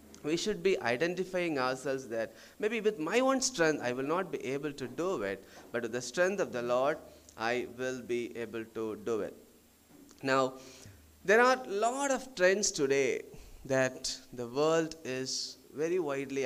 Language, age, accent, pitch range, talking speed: Malayalam, 20-39, native, 130-195 Hz, 170 wpm